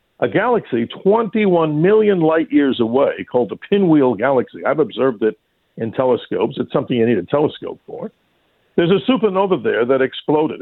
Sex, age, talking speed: male, 50-69, 165 wpm